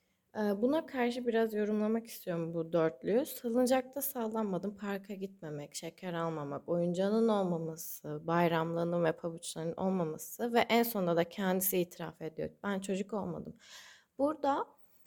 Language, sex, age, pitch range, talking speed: Turkish, female, 30-49, 185-235 Hz, 120 wpm